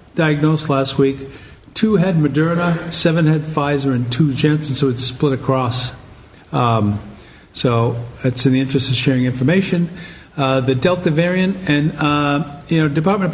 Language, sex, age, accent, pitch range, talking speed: English, male, 50-69, American, 130-165 Hz, 160 wpm